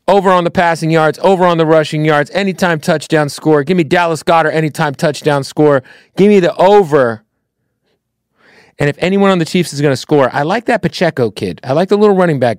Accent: American